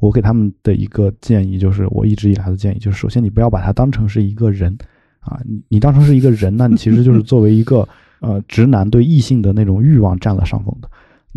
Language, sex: Chinese, male